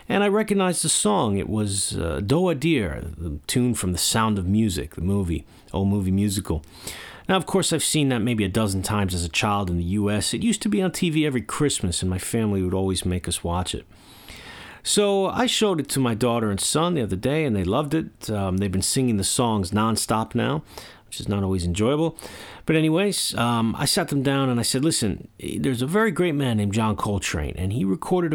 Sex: male